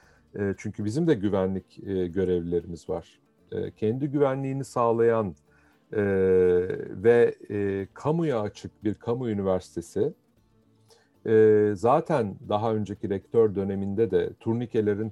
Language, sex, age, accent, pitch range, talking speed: Turkish, male, 40-59, native, 100-120 Hz, 85 wpm